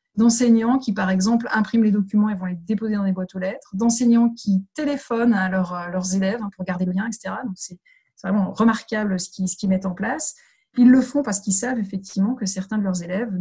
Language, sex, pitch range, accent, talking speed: French, female, 185-230 Hz, French, 235 wpm